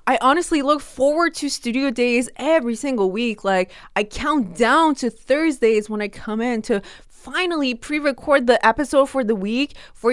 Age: 20-39